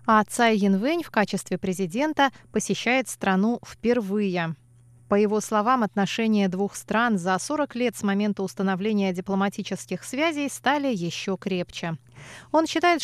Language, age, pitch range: Russian, 20-39, 190-245 Hz